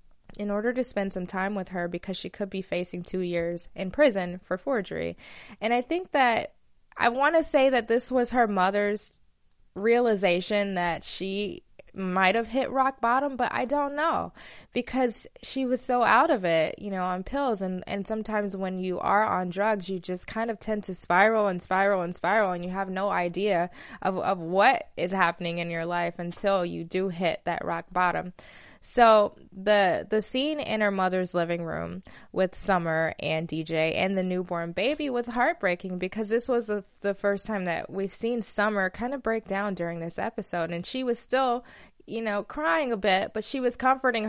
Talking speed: 195 wpm